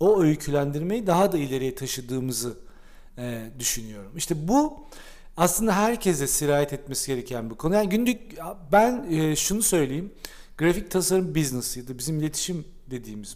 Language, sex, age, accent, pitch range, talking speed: Turkish, male, 40-59, native, 130-165 Hz, 135 wpm